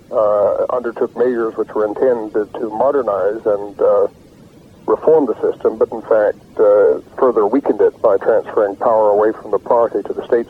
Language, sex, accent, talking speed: English, male, American, 170 wpm